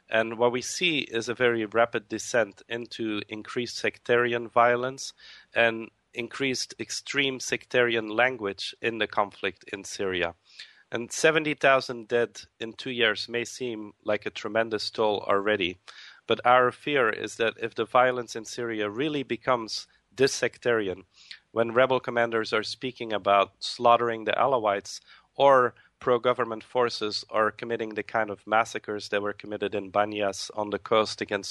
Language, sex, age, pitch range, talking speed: English, male, 40-59, 105-120 Hz, 145 wpm